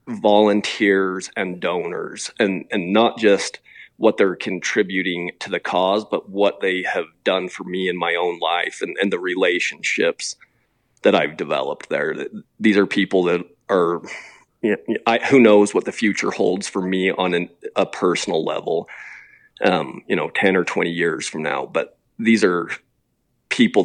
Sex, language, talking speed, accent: male, English, 165 wpm, American